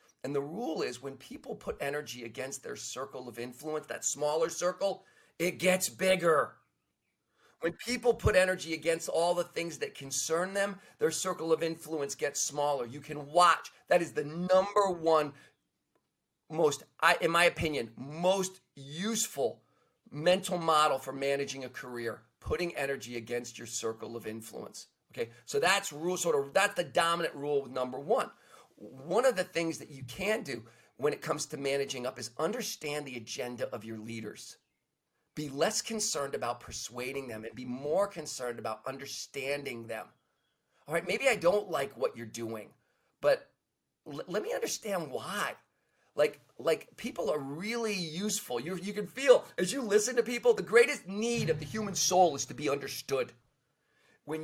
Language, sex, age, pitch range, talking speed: English, male, 40-59, 135-195 Hz, 165 wpm